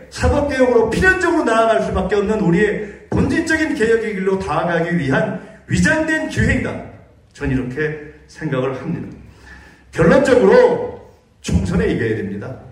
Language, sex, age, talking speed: English, male, 40-59, 100 wpm